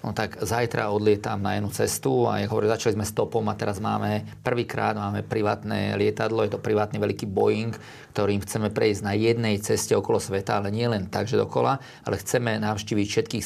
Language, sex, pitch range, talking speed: Slovak, male, 105-115 Hz, 190 wpm